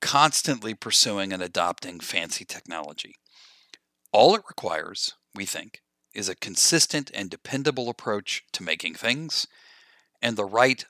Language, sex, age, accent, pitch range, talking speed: English, male, 40-59, American, 95-145 Hz, 125 wpm